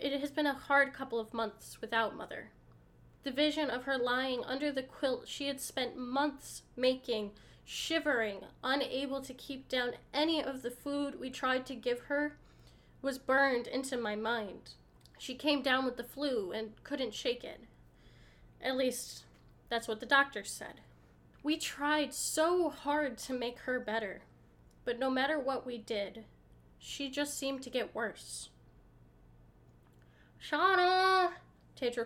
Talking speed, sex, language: 150 wpm, female, English